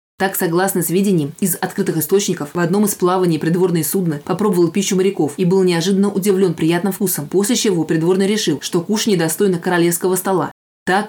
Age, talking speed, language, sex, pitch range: 20-39, 170 wpm, Russian, female, 170-195 Hz